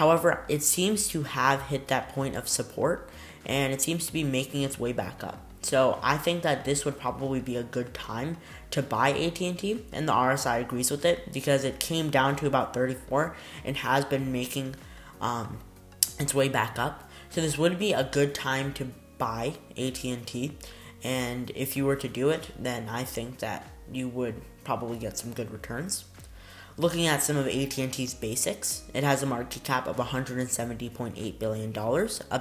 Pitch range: 115-140 Hz